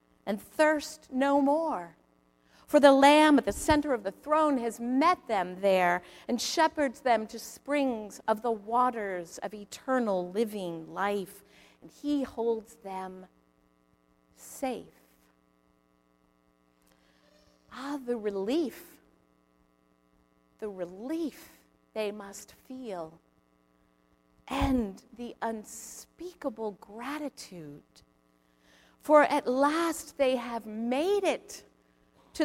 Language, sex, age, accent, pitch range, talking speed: English, female, 50-69, American, 160-270 Hz, 100 wpm